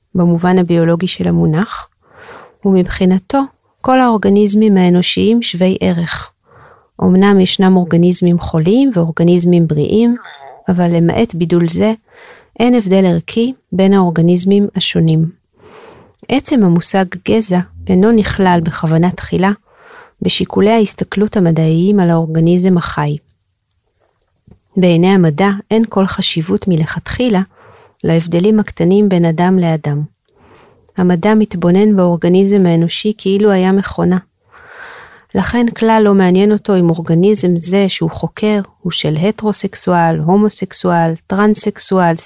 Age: 40-59